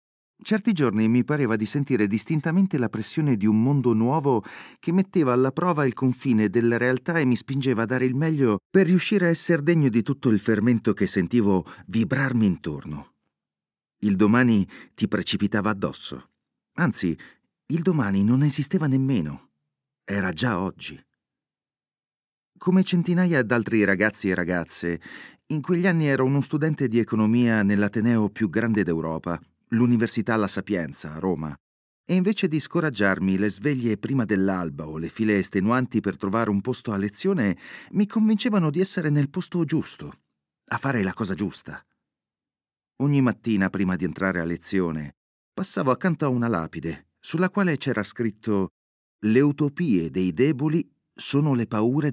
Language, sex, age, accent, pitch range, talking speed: Italian, male, 40-59, native, 100-150 Hz, 150 wpm